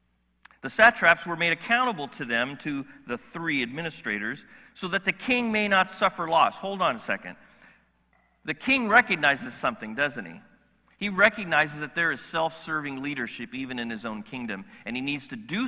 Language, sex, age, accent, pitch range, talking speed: English, male, 40-59, American, 155-215 Hz, 175 wpm